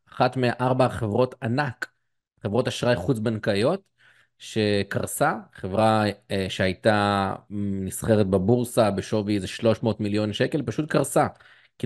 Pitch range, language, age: 105-125 Hz, Hebrew, 30-49